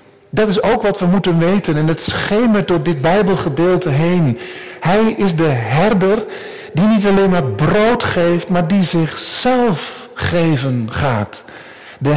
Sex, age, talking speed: male, 50-69, 150 wpm